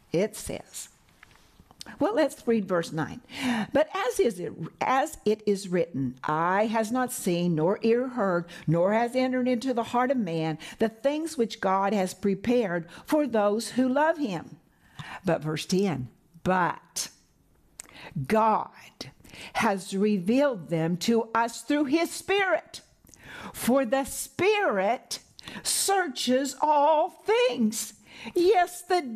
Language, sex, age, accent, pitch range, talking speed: English, female, 60-79, American, 210-300 Hz, 130 wpm